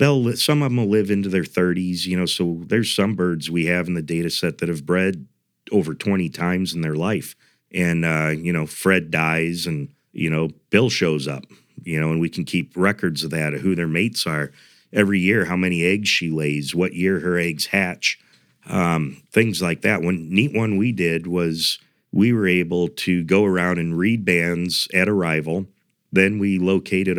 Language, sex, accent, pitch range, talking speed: English, male, American, 80-95 Hz, 205 wpm